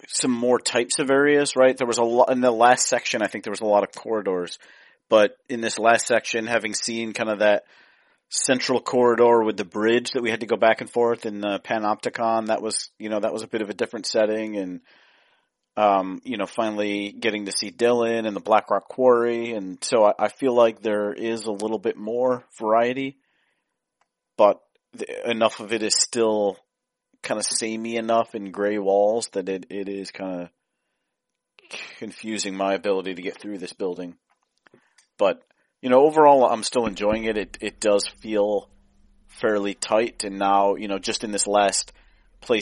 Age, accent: 40-59, American